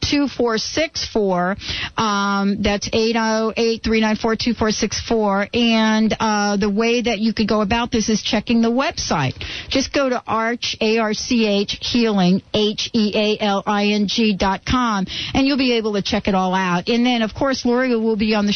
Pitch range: 195-235 Hz